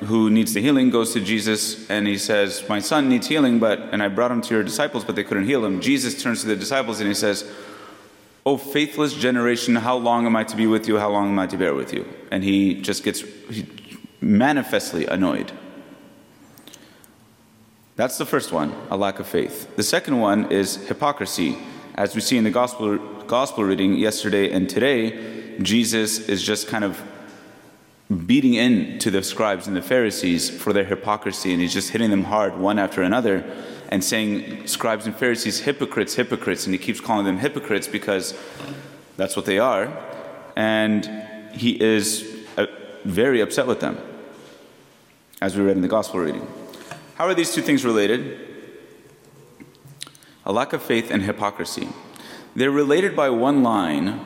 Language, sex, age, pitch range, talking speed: English, male, 30-49, 100-125 Hz, 175 wpm